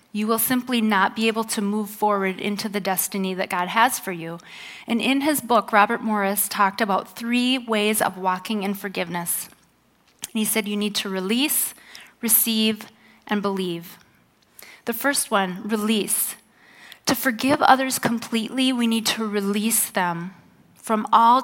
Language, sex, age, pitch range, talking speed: English, female, 30-49, 200-235 Hz, 155 wpm